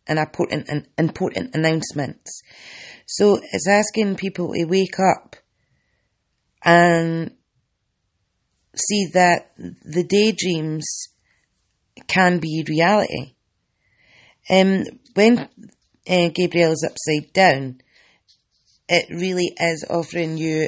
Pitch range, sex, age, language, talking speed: 150-180 Hz, female, 30-49, English, 95 wpm